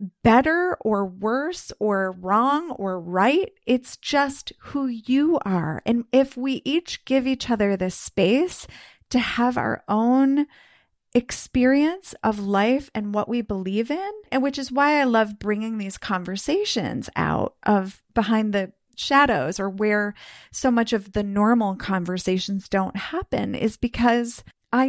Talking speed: 145 wpm